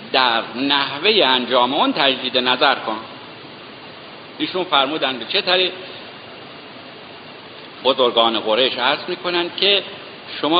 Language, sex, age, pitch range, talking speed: Persian, male, 60-79, 130-185 Hz, 95 wpm